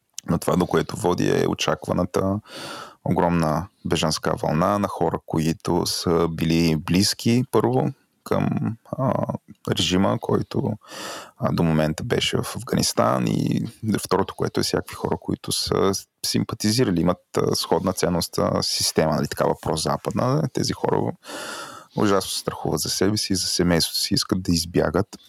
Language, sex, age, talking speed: Bulgarian, male, 20-39, 140 wpm